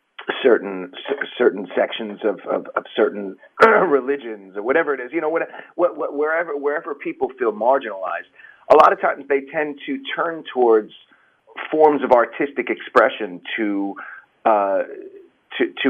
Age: 40-59